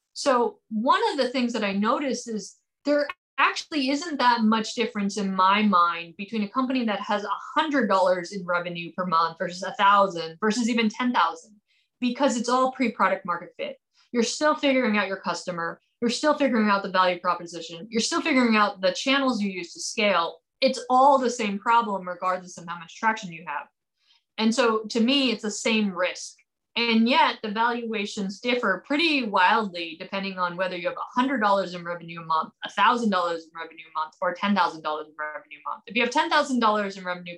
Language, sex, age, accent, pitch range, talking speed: English, female, 20-39, American, 180-240 Hz, 185 wpm